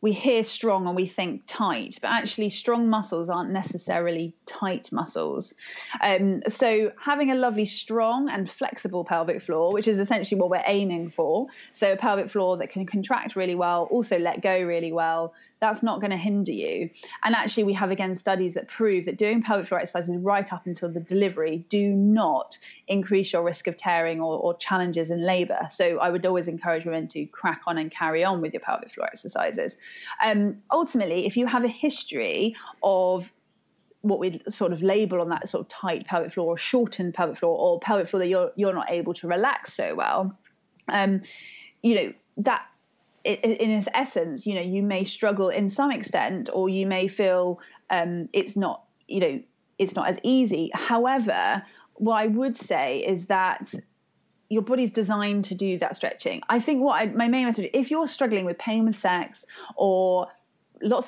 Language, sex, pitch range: English, female, 180-225 Hz